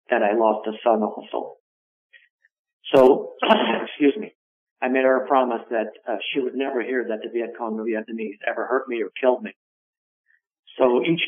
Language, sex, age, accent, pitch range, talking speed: English, male, 60-79, American, 110-130 Hz, 180 wpm